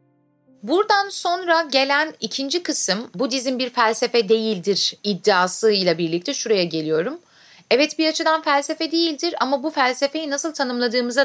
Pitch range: 205-275 Hz